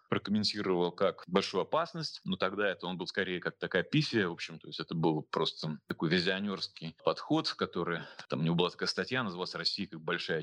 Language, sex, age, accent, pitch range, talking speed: Russian, male, 30-49, native, 90-115 Hz, 200 wpm